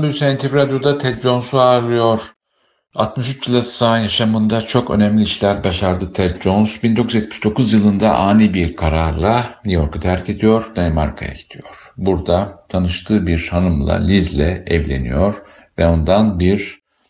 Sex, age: male, 50-69